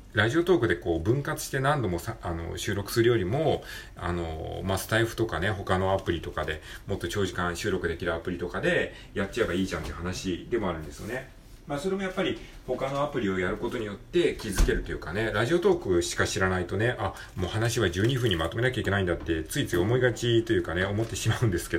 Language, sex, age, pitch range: Japanese, male, 40-59, 90-125 Hz